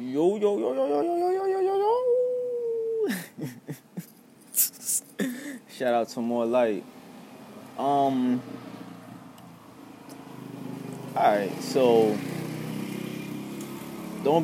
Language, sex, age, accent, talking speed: English, male, 20-39, American, 85 wpm